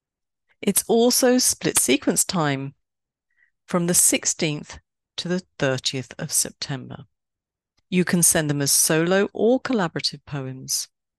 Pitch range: 135-180 Hz